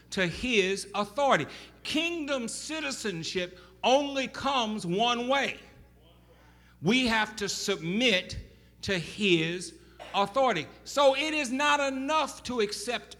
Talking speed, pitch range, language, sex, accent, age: 105 wpm, 115-180 Hz, English, male, American, 60-79